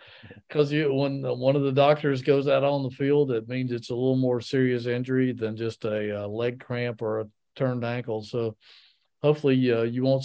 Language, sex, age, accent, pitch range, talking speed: English, male, 50-69, American, 115-140 Hz, 200 wpm